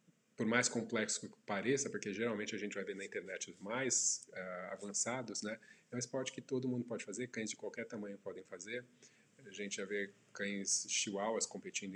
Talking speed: 195 wpm